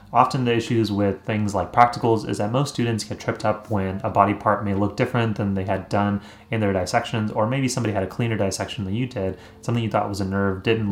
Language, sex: English, male